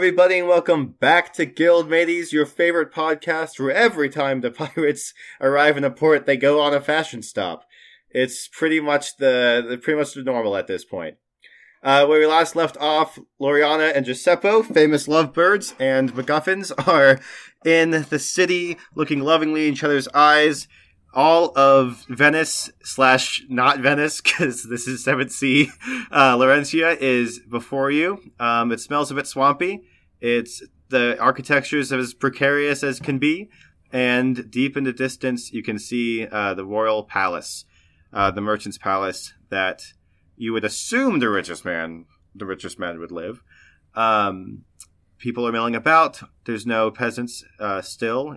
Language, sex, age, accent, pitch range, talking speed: English, male, 20-39, American, 105-150 Hz, 160 wpm